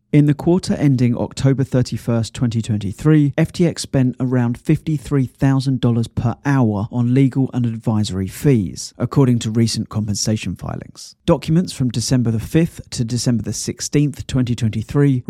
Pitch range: 115-140 Hz